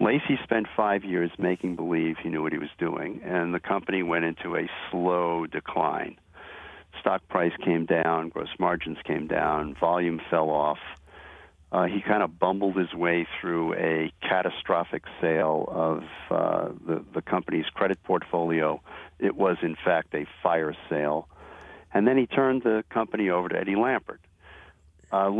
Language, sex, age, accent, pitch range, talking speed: English, male, 50-69, American, 80-95 Hz, 160 wpm